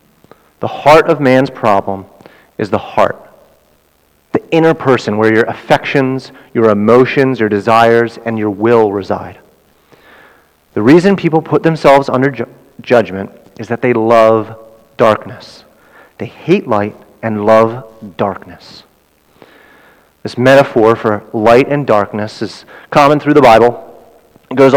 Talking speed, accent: 130 wpm, American